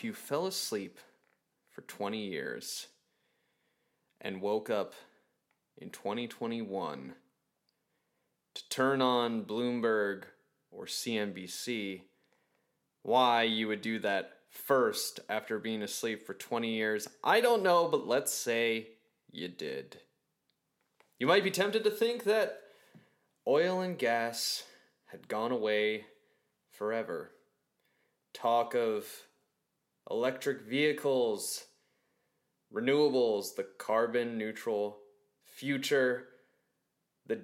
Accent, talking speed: American, 100 wpm